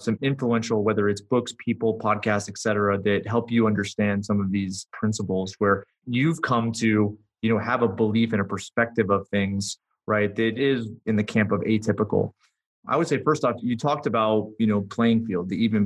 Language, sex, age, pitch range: English, male, 30-49, 105-120 Hz